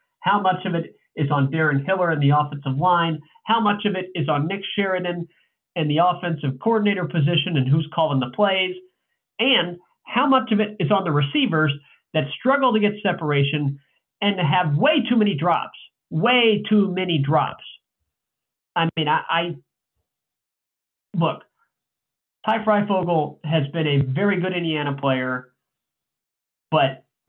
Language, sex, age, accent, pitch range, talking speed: English, male, 40-59, American, 145-185 Hz, 155 wpm